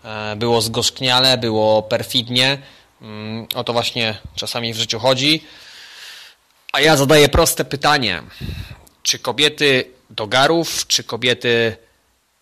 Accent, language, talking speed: native, Polish, 105 wpm